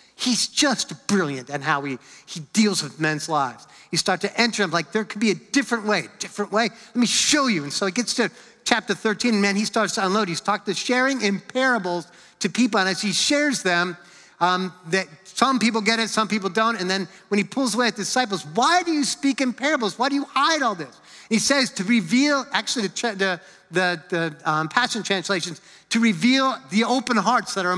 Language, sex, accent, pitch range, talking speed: English, male, American, 195-250 Hz, 225 wpm